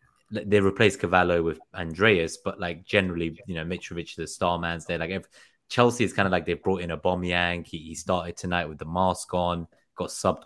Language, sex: English, male